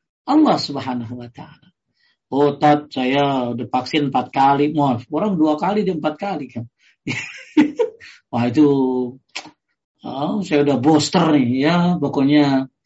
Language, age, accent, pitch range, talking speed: Indonesian, 40-59, native, 145-205 Hz, 120 wpm